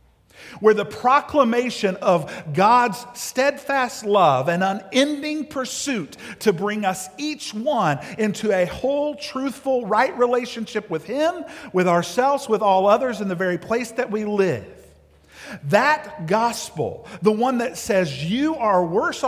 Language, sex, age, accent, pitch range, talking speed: English, male, 50-69, American, 145-230 Hz, 135 wpm